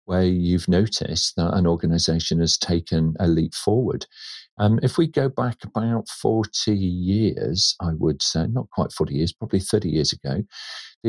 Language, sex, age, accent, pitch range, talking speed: English, male, 50-69, British, 85-115 Hz, 170 wpm